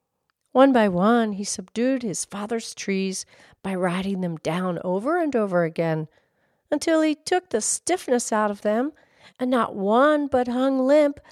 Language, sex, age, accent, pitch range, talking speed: English, female, 40-59, American, 205-290 Hz, 160 wpm